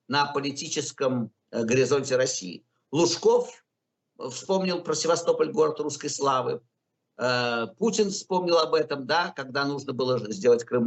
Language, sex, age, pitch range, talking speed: Russian, male, 50-69, 125-190 Hz, 115 wpm